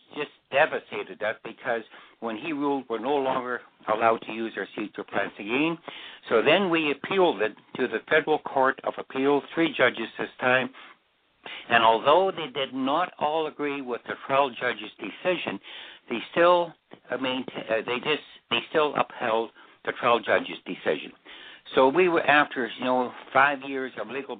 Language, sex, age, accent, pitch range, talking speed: English, male, 60-79, American, 115-145 Hz, 170 wpm